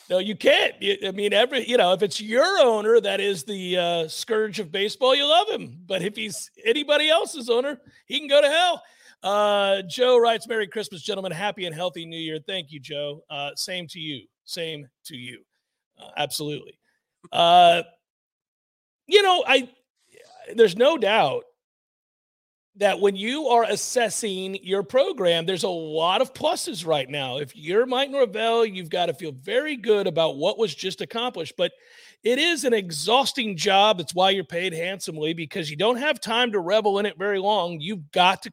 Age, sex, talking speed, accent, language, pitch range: 40-59, male, 180 wpm, American, English, 180-245 Hz